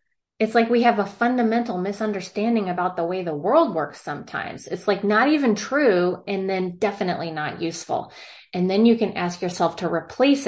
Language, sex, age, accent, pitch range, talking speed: English, female, 30-49, American, 180-240 Hz, 185 wpm